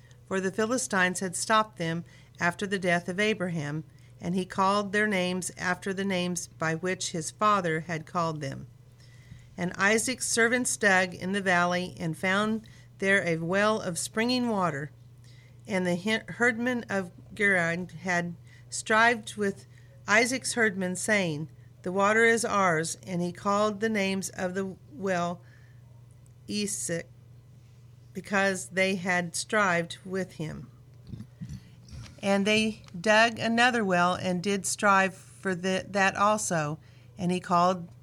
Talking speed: 135 wpm